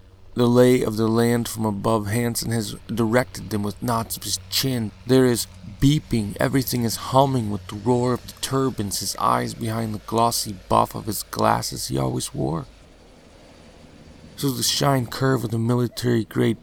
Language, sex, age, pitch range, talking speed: English, male, 40-59, 95-120 Hz, 170 wpm